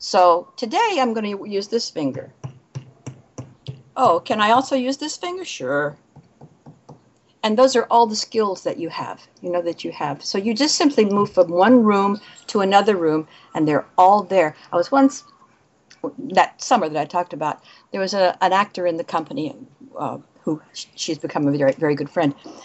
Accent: American